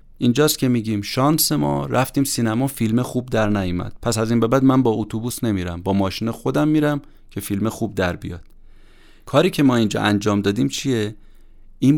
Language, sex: Persian, male